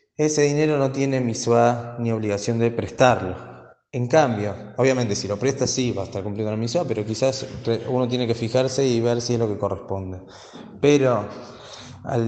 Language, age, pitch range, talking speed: Spanish, 20-39, 115-135 Hz, 180 wpm